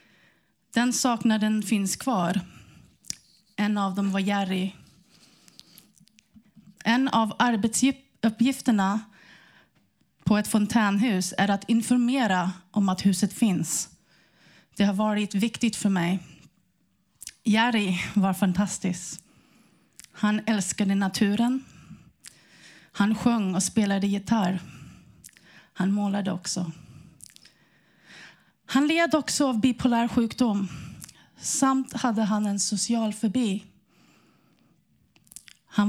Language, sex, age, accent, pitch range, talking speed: Swedish, female, 30-49, native, 190-230 Hz, 90 wpm